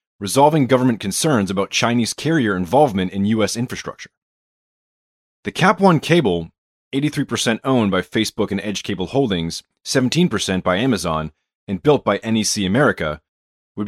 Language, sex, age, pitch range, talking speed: English, male, 30-49, 95-135 Hz, 130 wpm